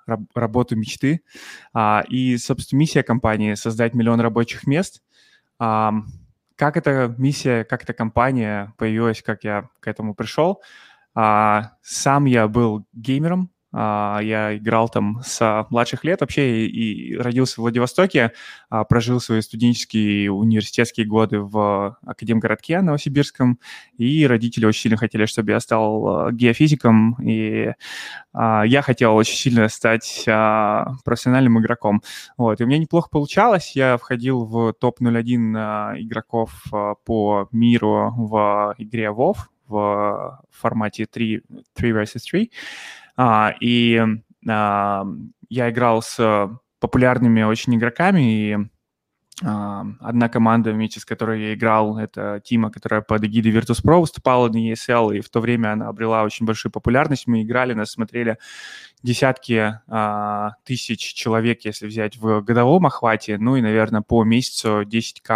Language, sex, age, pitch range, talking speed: Russian, male, 20-39, 110-125 Hz, 125 wpm